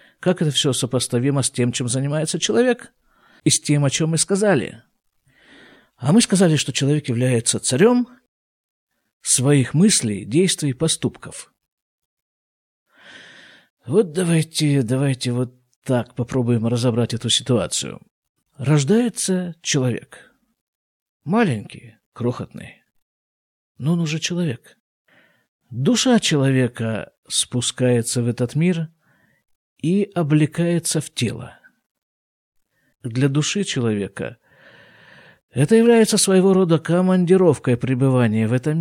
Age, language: 50-69, Russian